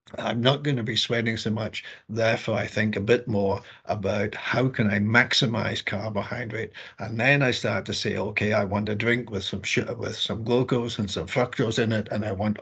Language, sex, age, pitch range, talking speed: English, male, 60-79, 105-130 Hz, 210 wpm